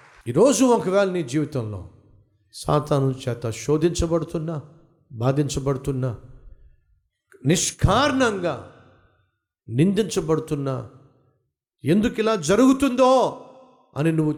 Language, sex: Telugu, male